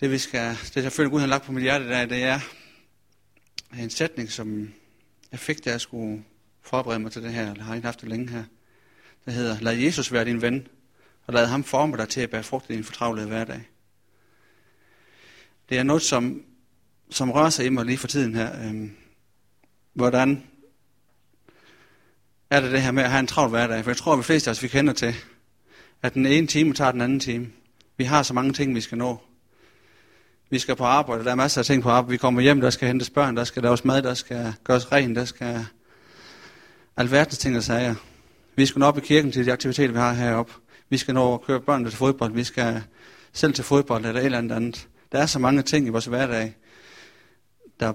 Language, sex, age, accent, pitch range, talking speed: Danish, male, 30-49, native, 115-135 Hz, 225 wpm